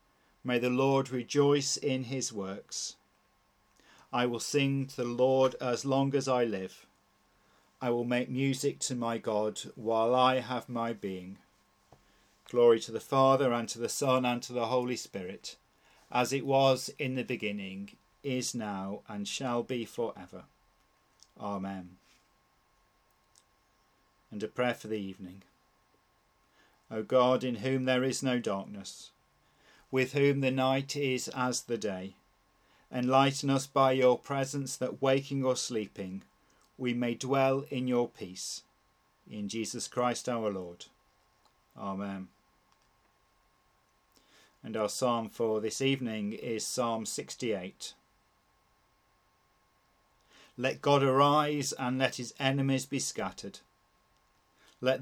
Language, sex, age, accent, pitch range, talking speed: English, male, 40-59, British, 105-135 Hz, 130 wpm